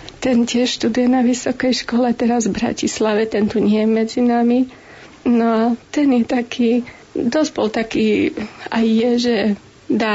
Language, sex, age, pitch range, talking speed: Slovak, female, 30-49, 225-255 Hz, 160 wpm